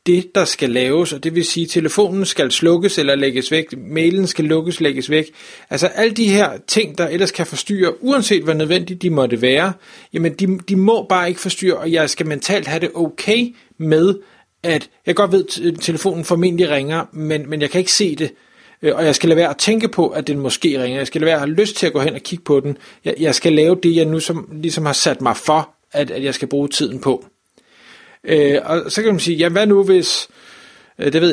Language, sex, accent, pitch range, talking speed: Danish, male, native, 140-175 Hz, 235 wpm